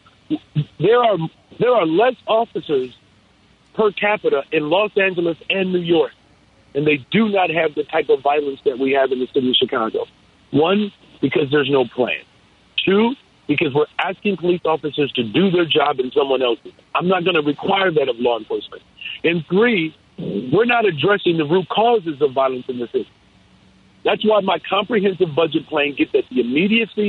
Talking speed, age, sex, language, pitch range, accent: 180 wpm, 50-69, male, English, 150-205 Hz, American